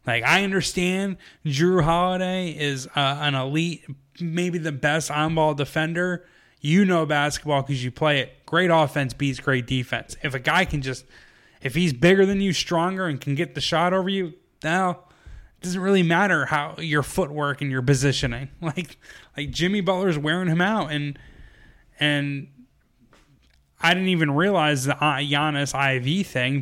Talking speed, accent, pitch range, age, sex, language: 160 wpm, American, 130-165 Hz, 20-39, male, English